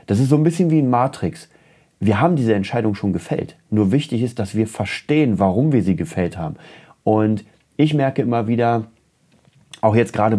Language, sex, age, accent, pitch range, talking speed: German, male, 30-49, German, 100-135 Hz, 190 wpm